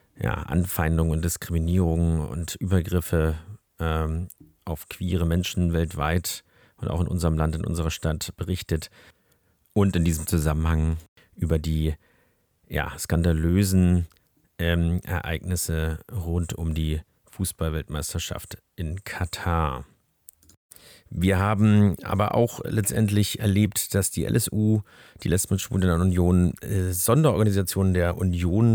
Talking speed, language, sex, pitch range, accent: 110 wpm, German, male, 85-105 Hz, German